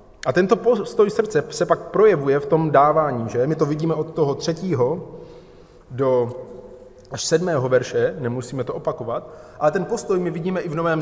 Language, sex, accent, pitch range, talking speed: Czech, male, native, 125-170 Hz, 175 wpm